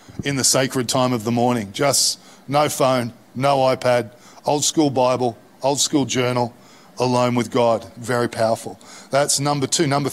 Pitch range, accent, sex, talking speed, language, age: 125-150 Hz, Australian, male, 160 wpm, English, 40-59